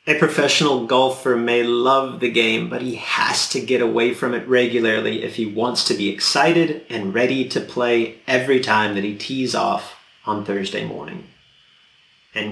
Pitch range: 130-210 Hz